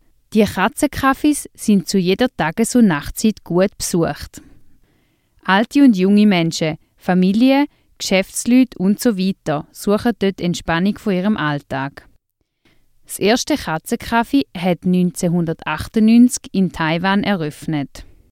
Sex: female